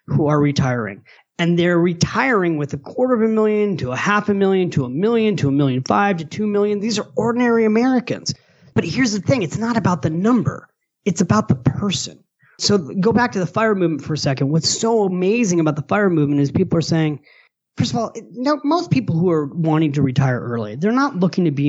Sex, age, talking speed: male, 30-49, 225 wpm